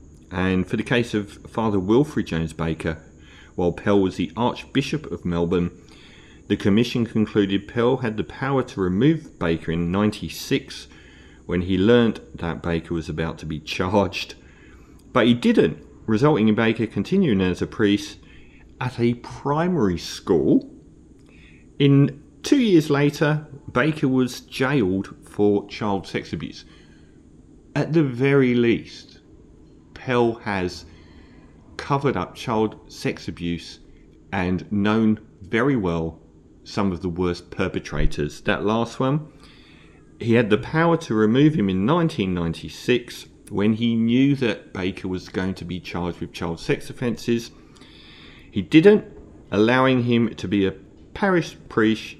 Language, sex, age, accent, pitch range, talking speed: English, male, 40-59, British, 85-125 Hz, 135 wpm